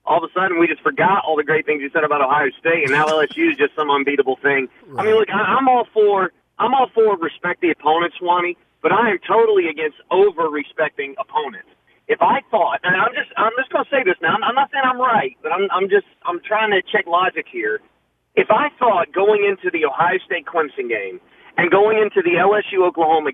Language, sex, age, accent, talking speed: English, male, 40-59, American, 220 wpm